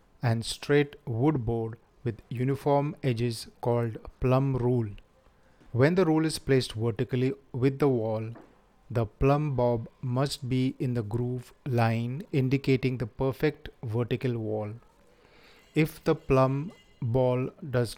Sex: male